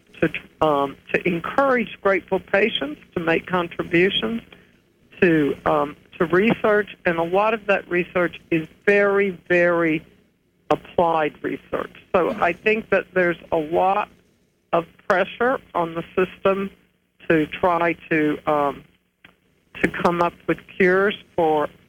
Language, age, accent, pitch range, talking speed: English, 60-79, American, 155-190 Hz, 125 wpm